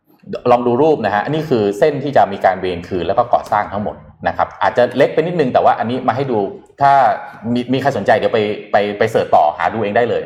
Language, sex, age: Thai, male, 20-39